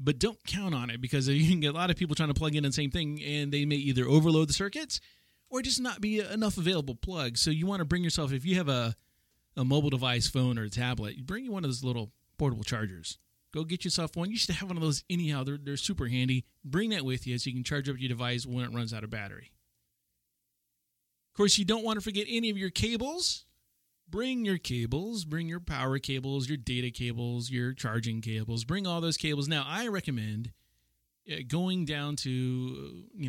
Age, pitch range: 30-49, 120-165 Hz